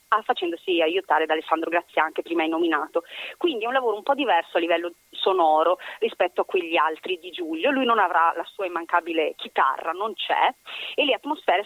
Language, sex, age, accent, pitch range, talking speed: Italian, female, 30-49, native, 170-265 Hz, 190 wpm